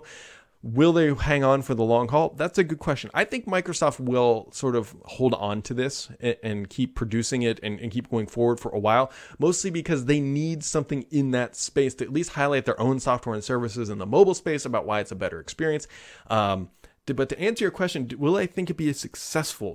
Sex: male